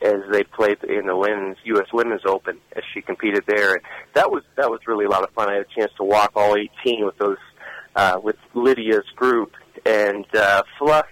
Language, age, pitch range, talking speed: English, 40-59, 115-170 Hz, 215 wpm